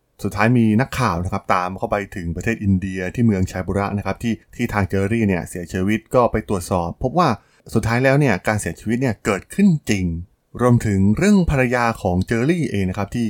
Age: 20-39